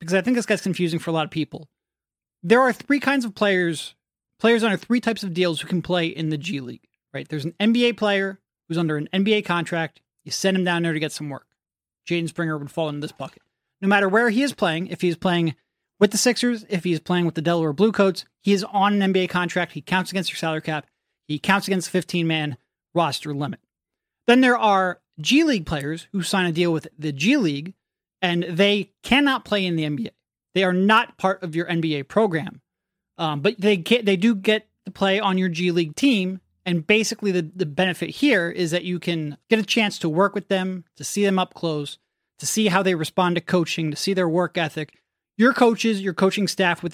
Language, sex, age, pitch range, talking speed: English, male, 30-49, 165-210 Hz, 225 wpm